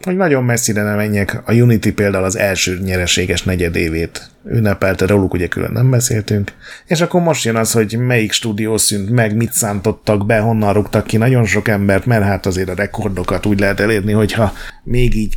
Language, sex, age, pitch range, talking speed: Hungarian, male, 30-49, 95-115 Hz, 185 wpm